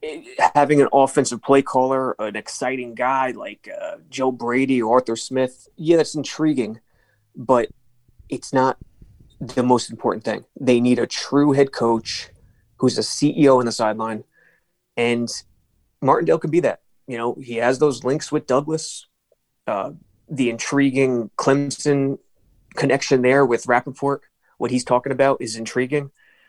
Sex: male